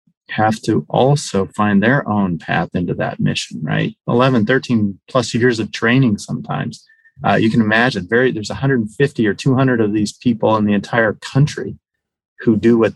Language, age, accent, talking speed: English, 30-49, American, 165 wpm